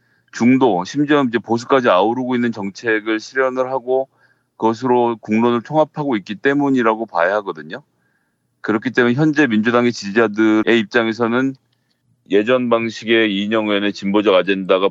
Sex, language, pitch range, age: male, Korean, 100-130 Hz, 30-49